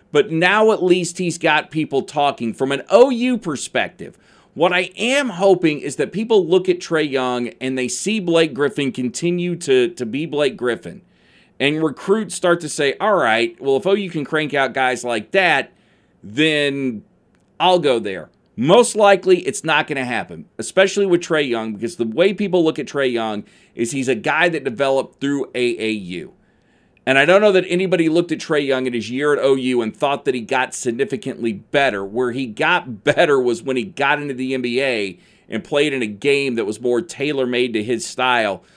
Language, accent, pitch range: English, American, 125-180 Hz